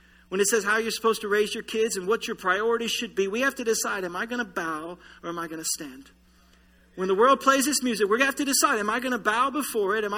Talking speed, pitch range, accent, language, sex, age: 290 wpm, 195-270 Hz, American, English, male, 40-59